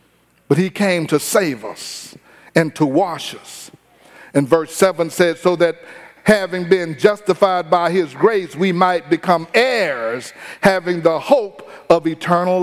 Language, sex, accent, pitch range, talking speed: English, male, American, 140-185 Hz, 145 wpm